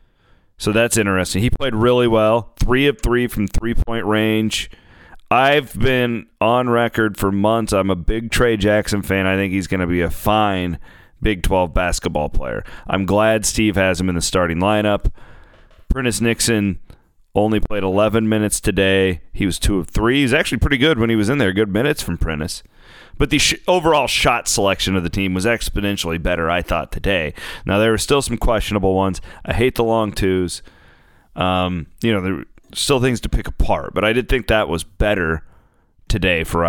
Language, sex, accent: English, male, American